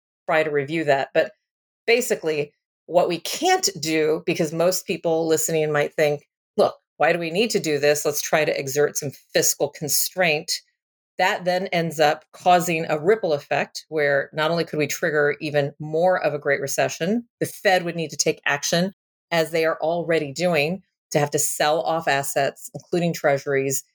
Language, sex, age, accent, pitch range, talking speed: English, female, 40-59, American, 150-180 Hz, 180 wpm